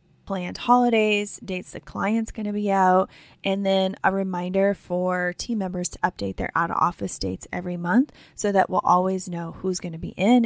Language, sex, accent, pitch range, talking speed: English, female, American, 180-205 Hz, 190 wpm